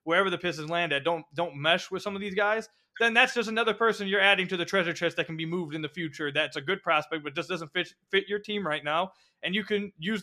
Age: 20-39